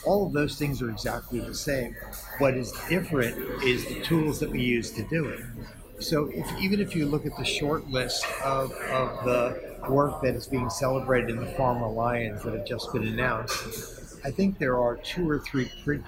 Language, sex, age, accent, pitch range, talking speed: English, male, 50-69, American, 120-140 Hz, 205 wpm